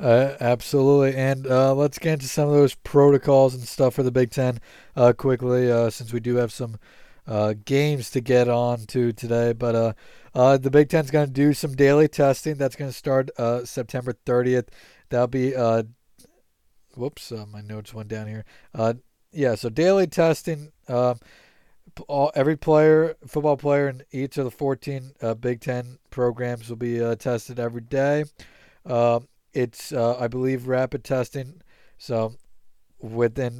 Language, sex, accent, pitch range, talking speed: English, male, American, 115-135 Hz, 175 wpm